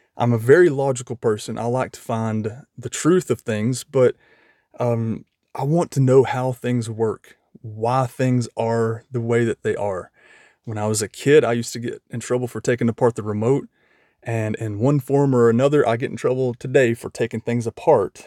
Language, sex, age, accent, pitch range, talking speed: English, male, 30-49, American, 110-130 Hz, 200 wpm